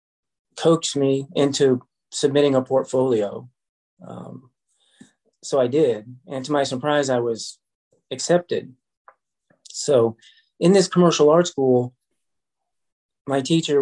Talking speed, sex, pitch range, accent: 110 wpm, male, 120-145 Hz, American